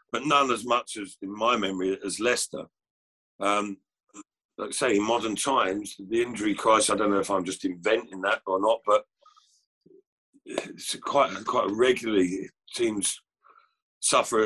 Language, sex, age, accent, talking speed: English, male, 50-69, British, 155 wpm